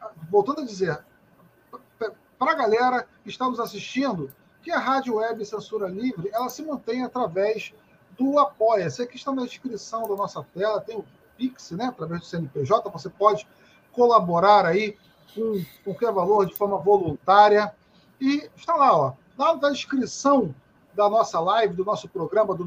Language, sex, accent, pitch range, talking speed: Portuguese, male, Brazilian, 190-250 Hz, 160 wpm